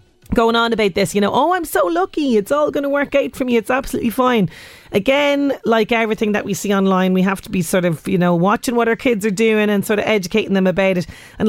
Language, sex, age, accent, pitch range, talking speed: English, female, 30-49, Irish, 195-250 Hz, 260 wpm